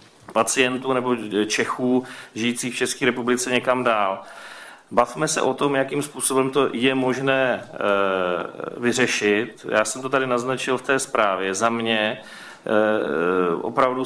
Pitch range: 115-125 Hz